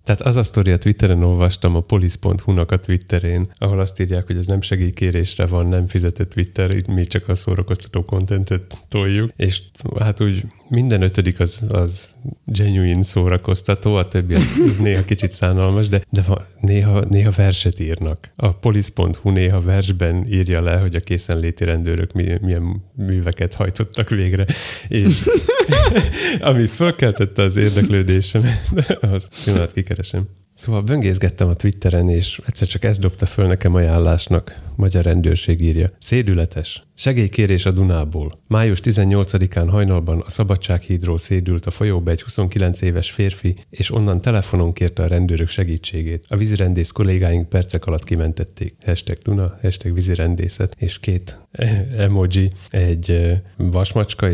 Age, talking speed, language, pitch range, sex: 30-49, 140 wpm, Hungarian, 90-105 Hz, male